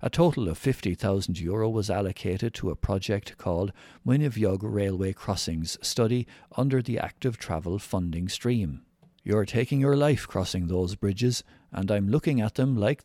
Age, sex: 60-79, male